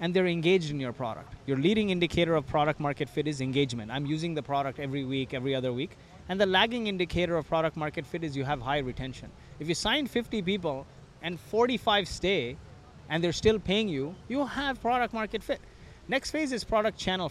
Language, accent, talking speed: English, Indian, 210 wpm